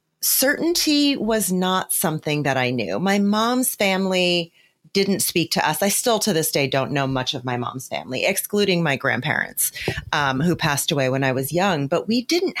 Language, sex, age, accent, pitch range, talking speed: English, female, 30-49, American, 165-230 Hz, 190 wpm